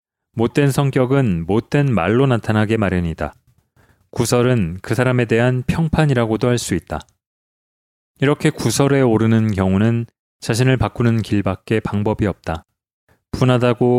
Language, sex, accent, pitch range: Korean, male, native, 100-125 Hz